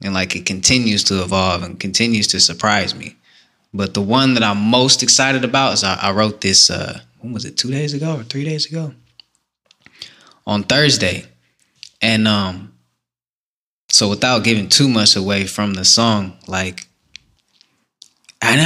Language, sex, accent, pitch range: English, male, American, 95-125 Hz